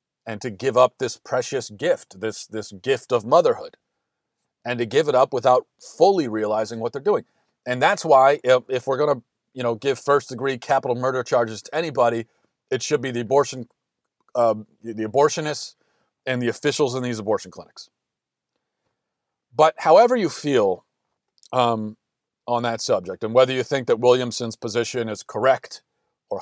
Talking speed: 170 wpm